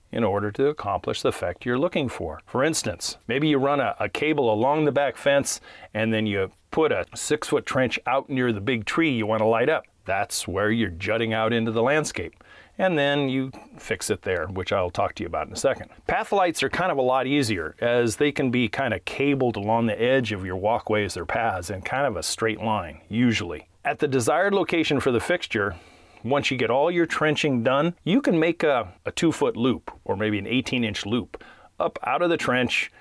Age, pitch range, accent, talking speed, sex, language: 30-49, 110-140 Hz, American, 225 wpm, male, English